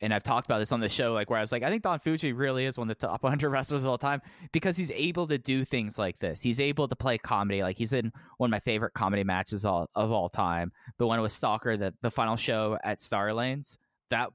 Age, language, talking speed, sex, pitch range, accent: 20-39, English, 270 wpm, male, 100-135 Hz, American